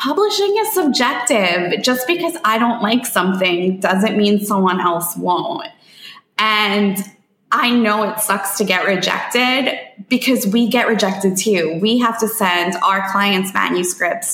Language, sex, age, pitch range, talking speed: English, female, 20-39, 185-240 Hz, 140 wpm